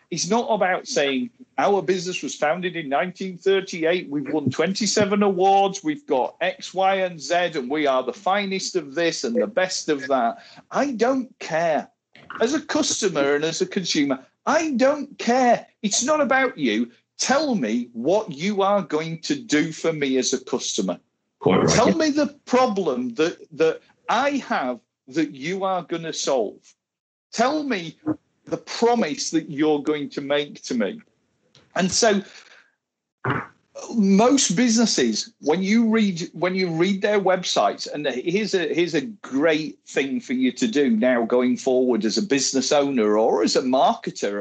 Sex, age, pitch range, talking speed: male, 50-69, 155-240 Hz, 165 wpm